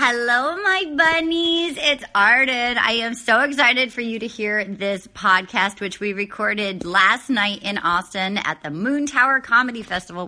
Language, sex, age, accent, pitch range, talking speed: English, female, 30-49, American, 195-250 Hz, 165 wpm